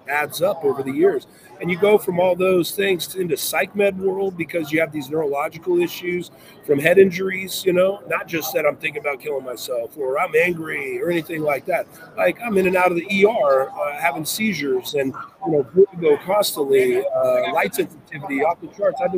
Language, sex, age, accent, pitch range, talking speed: English, male, 40-59, American, 170-230 Hz, 210 wpm